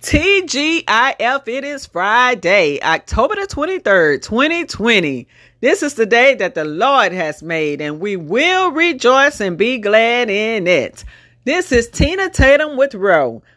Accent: American